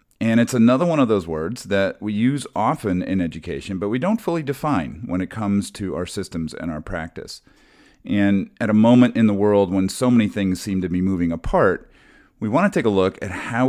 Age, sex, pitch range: 40-59, male, 95-115 Hz